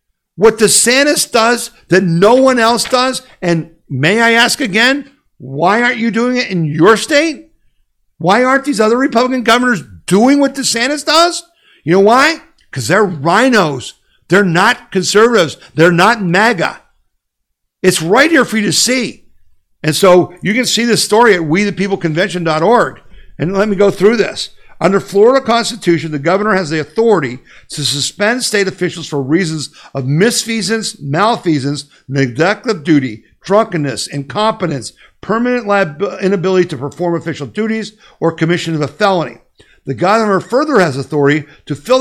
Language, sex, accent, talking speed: English, male, American, 150 wpm